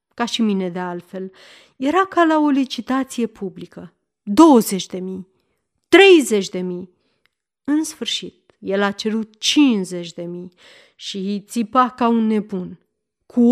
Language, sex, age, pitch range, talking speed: Romanian, female, 30-49, 195-275 Hz, 140 wpm